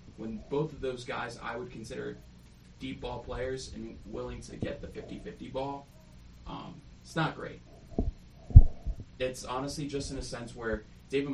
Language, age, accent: English, 20-39, American